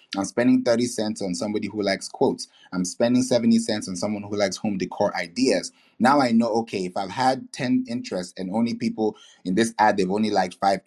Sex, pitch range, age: male, 100-120 Hz, 30-49